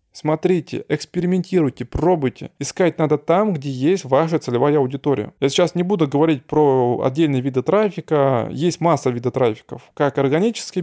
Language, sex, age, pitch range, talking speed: Russian, male, 20-39, 130-160 Hz, 145 wpm